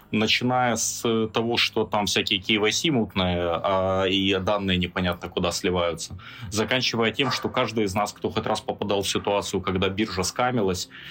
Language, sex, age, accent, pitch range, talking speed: Russian, male, 20-39, native, 95-120 Hz, 150 wpm